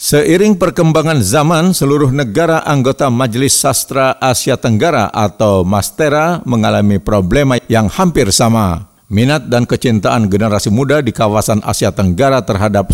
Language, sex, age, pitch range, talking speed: Indonesian, male, 50-69, 105-140 Hz, 125 wpm